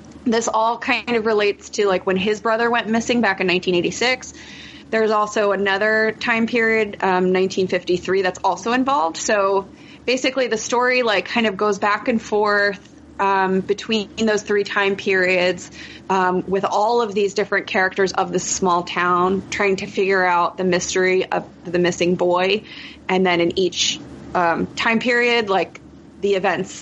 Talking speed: 165 wpm